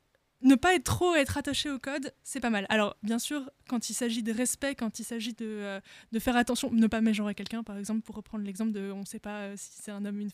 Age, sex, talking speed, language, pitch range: 20-39, female, 275 wpm, French, 215-255 Hz